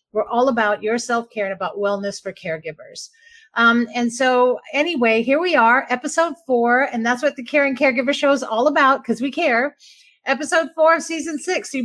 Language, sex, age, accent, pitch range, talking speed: English, female, 40-59, American, 205-275 Hz, 200 wpm